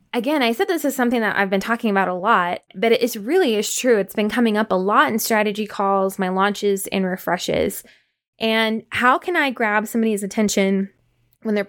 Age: 20-39